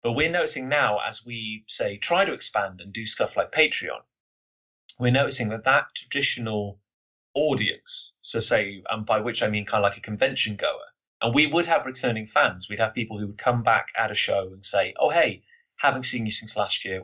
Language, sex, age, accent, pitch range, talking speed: English, male, 30-49, British, 100-125 Hz, 210 wpm